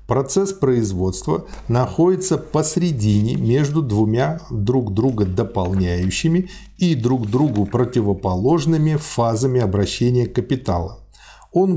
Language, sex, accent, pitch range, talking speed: Russian, male, native, 105-145 Hz, 85 wpm